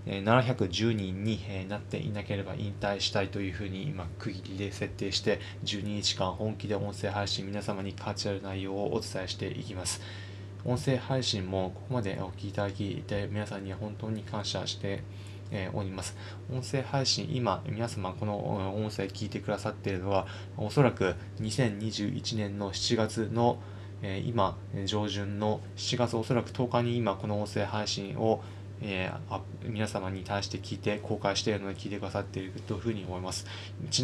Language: Japanese